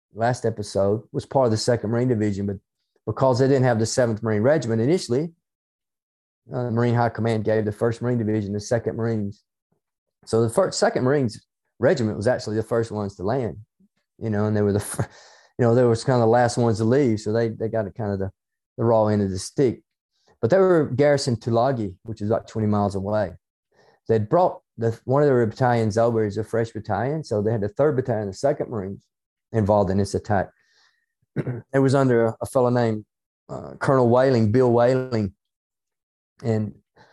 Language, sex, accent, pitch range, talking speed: English, male, American, 110-130 Hz, 205 wpm